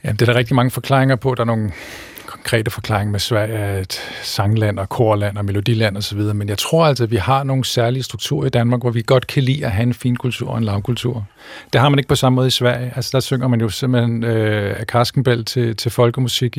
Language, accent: Danish, native